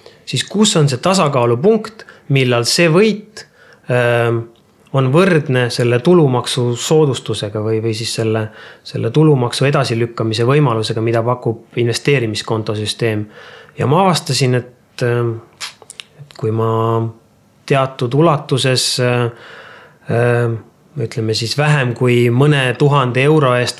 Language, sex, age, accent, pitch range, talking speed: English, male, 30-49, Finnish, 115-140 Hz, 105 wpm